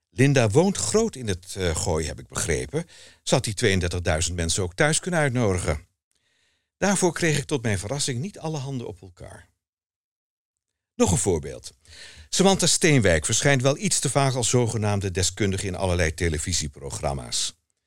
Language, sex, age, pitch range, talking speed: Dutch, male, 60-79, 90-140 Hz, 155 wpm